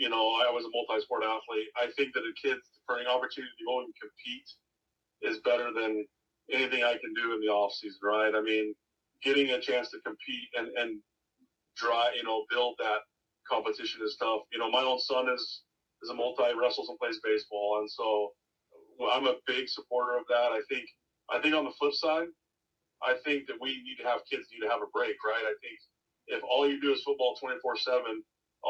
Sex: male